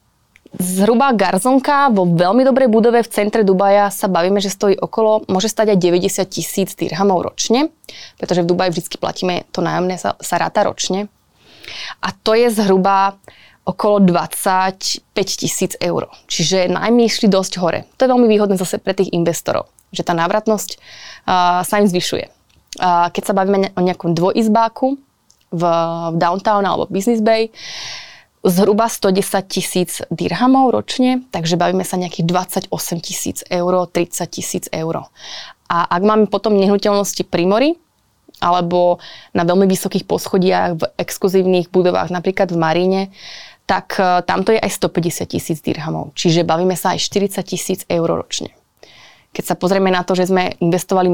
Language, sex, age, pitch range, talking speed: Slovak, female, 20-39, 180-200 Hz, 150 wpm